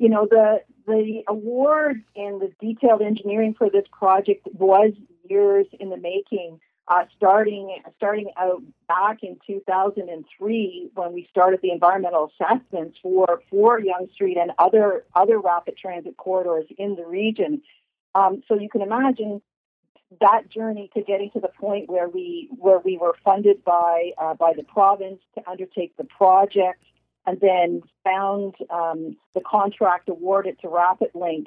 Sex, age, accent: female, 50-69, American